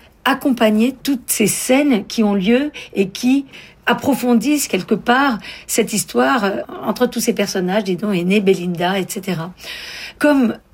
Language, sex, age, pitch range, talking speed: French, female, 50-69, 195-245 Hz, 125 wpm